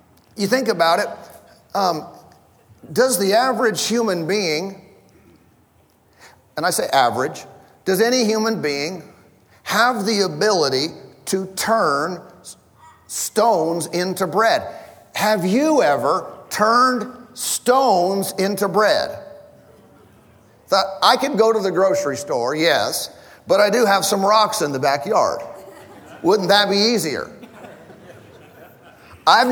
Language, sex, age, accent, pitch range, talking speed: English, male, 50-69, American, 165-225 Hz, 110 wpm